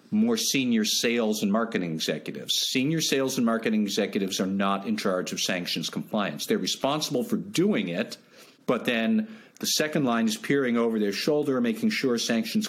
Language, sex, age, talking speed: English, male, 50-69, 170 wpm